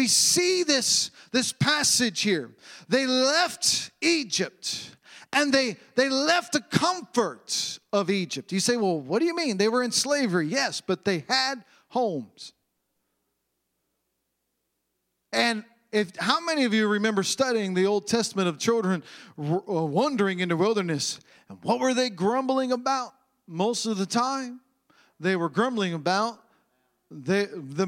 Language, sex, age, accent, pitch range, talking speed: English, male, 40-59, American, 185-255 Hz, 140 wpm